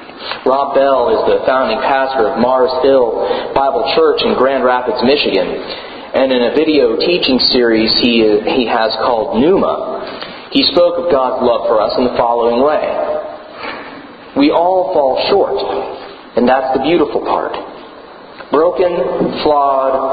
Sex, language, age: male, English, 40-59